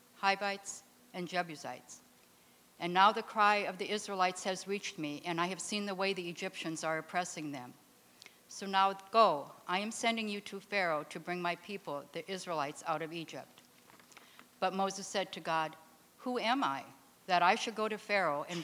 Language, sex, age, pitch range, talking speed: English, female, 60-79, 165-205 Hz, 185 wpm